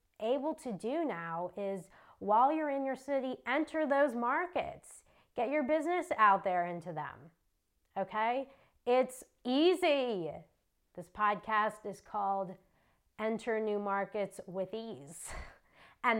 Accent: American